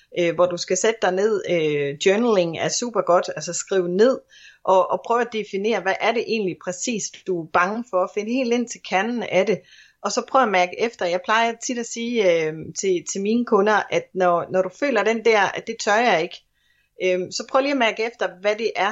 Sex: female